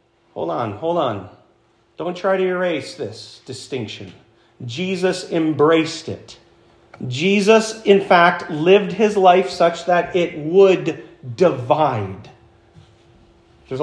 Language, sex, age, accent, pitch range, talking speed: English, male, 40-59, American, 140-200 Hz, 110 wpm